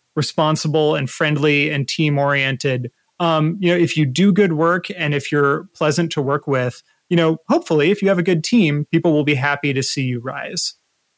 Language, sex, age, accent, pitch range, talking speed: English, male, 30-49, American, 140-180 Hz, 205 wpm